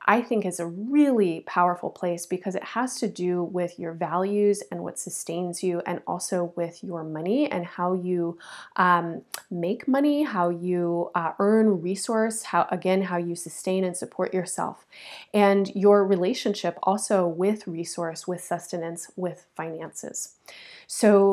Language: English